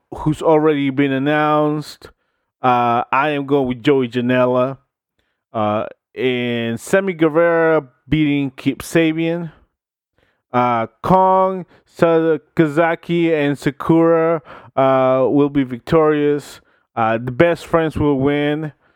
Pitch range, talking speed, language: 125-160 Hz, 105 wpm, English